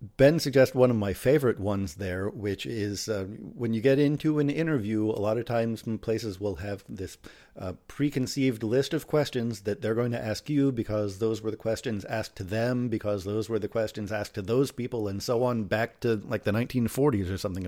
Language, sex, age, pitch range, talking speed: English, male, 50-69, 105-130 Hz, 215 wpm